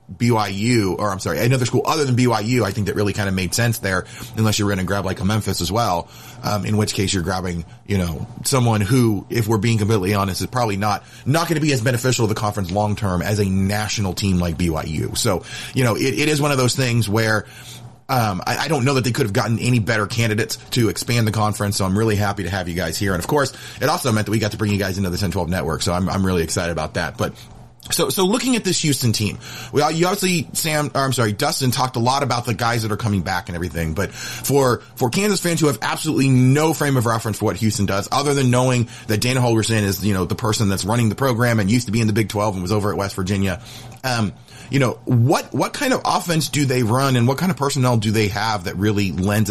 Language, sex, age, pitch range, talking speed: English, male, 30-49, 100-125 Hz, 265 wpm